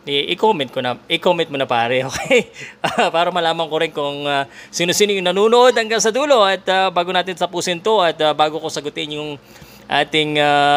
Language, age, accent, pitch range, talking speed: Filipino, 20-39, native, 150-185 Hz, 190 wpm